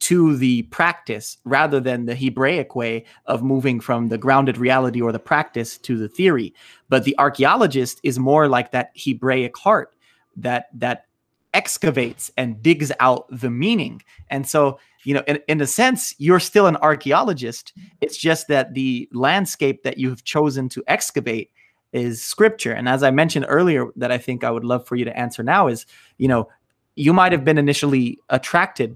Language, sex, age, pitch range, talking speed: English, male, 30-49, 125-150 Hz, 180 wpm